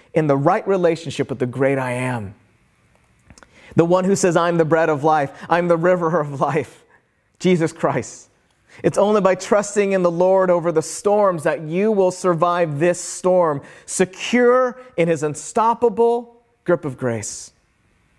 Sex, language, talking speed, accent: male, English, 160 wpm, American